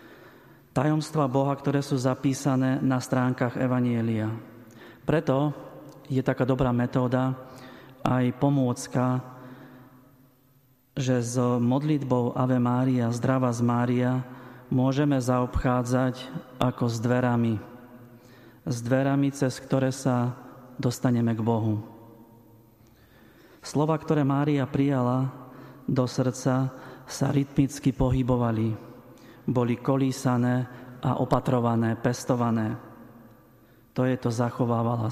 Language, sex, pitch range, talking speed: Slovak, male, 120-130 Hz, 95 wpm